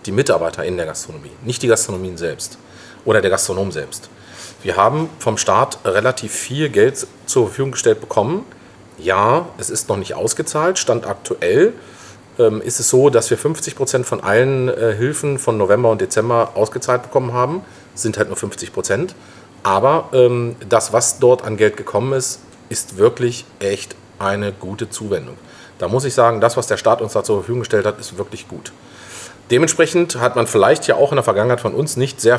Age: 40-59